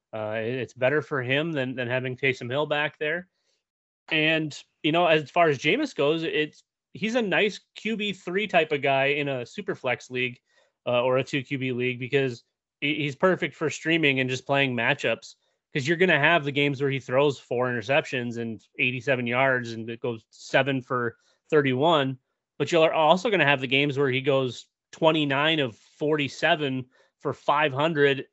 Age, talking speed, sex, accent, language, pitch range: 30-49, 180 wpm, male, American, English, 130-155 Hz